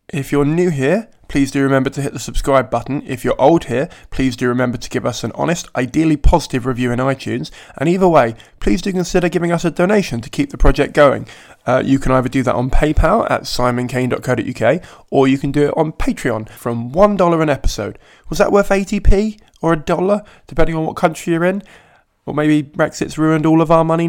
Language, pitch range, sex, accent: English, 125-165 Hz, male, British